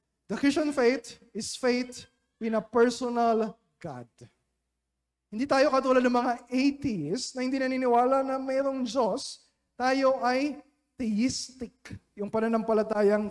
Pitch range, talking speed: 230-270 Hz, 115 wpm